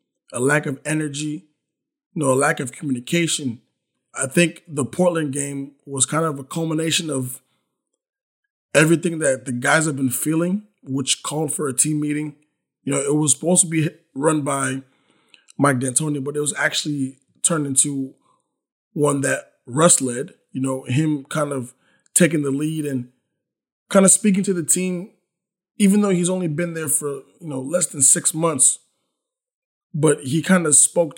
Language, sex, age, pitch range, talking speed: English, male, 20-39, 140-170 Hz, 170 wpm